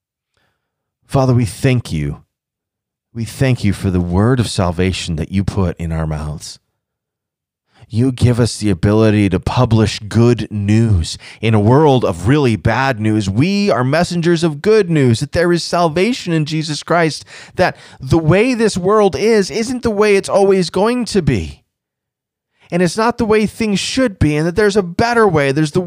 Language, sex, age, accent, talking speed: English, male, 30-49, American, 180 wpm